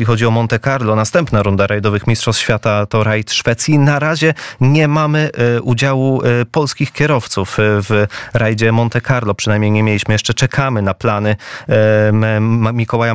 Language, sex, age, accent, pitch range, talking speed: Polish, male, 20-39, native, 105-120 Hz, 140 wpm